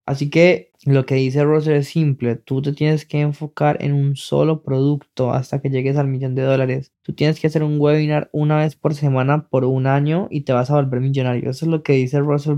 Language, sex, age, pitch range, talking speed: Spanish, male, 20-39, 135-155 Hz, 235 wpm